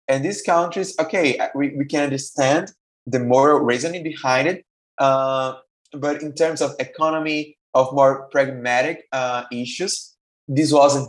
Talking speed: 140 wpm